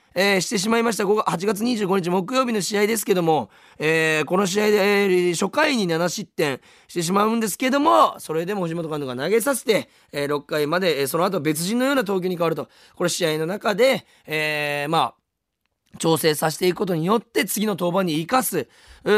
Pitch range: 165-225 Hz